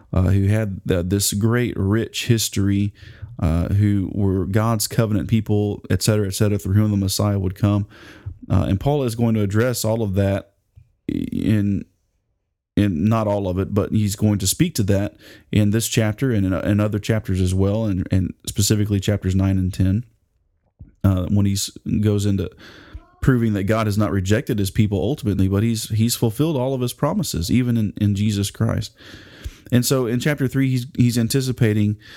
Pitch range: 95-110 Hz